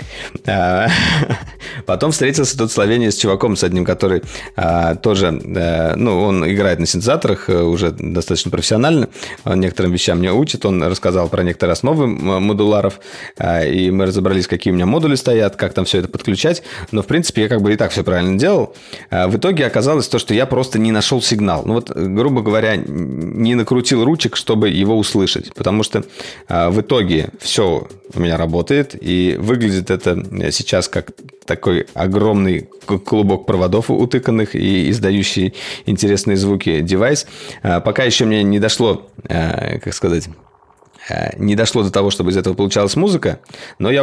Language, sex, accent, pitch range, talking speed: Russian, male, native, 90-110 Hz, 155 wpm